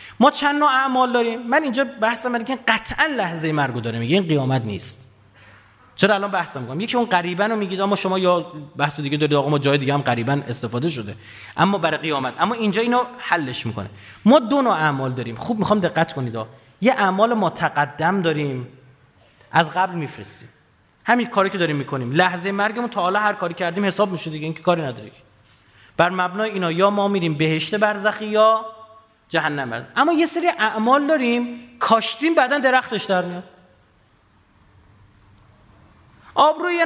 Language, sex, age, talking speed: Persian, male, 30-49, 165 wpm